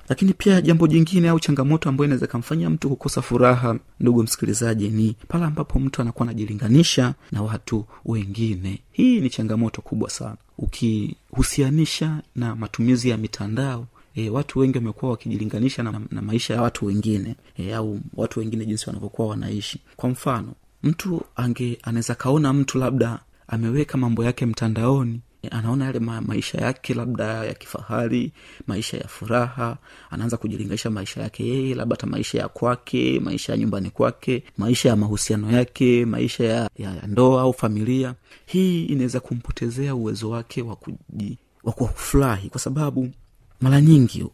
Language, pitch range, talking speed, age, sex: Swahili, 110-130 Hz, 145 wpm, 30-49, male